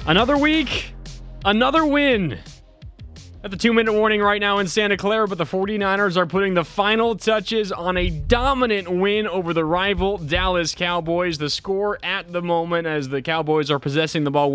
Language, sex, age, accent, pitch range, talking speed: English, male, 20-39, American, 155-205 Hz, 175 wpm